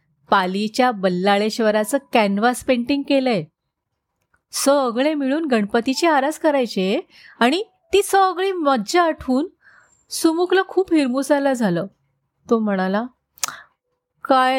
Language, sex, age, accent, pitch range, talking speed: Marathi, female, 30-49, native, 195-280 Hz, 90 wpm